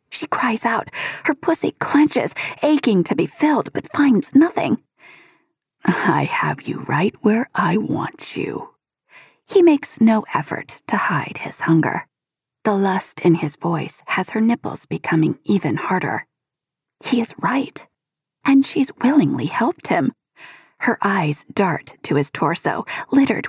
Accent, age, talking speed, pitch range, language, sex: American, 40-59, 140 wpm, 170-260 Hz, English, female